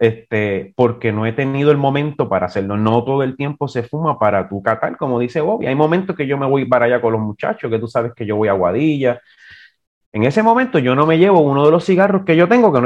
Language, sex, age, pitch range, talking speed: English, male, 30-49, 120-180 Hz, 260 wpm